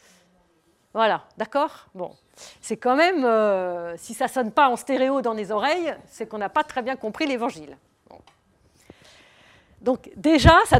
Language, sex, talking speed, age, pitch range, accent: French, female, 160 wpm, 50-69, 210-275 Hz, French